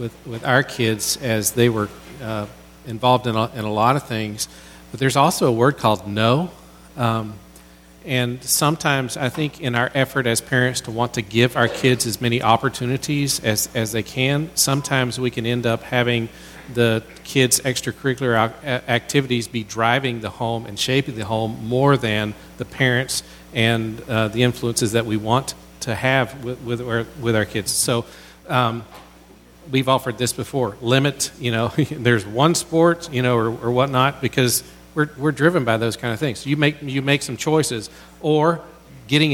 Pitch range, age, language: 115-140 Hz, 40-59, English